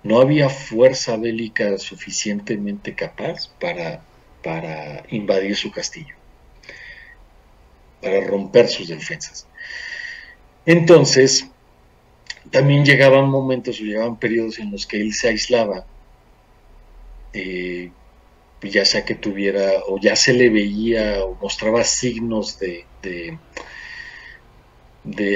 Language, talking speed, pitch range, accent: Spanish, 105 wpm, 100-125 Hz, Mexican